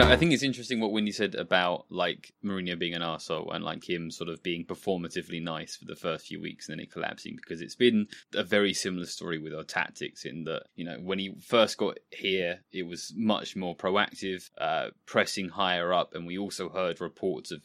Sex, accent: male, British